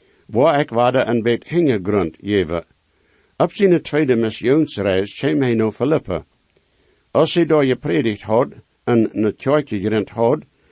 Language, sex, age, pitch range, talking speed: English, male, 60-79, 110-140 Hz, 145 wpm